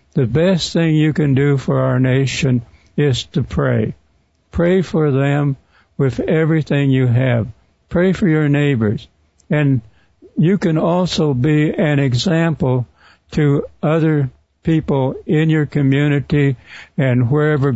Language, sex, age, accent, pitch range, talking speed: English, male, 60-79, American, 125-155 Hz, 130 wpm